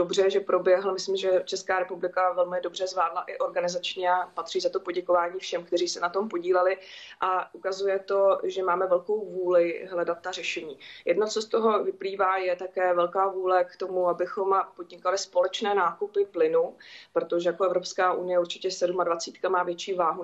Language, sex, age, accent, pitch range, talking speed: Czech, female, 20-39, native, 170-195 Hz, 170 wpm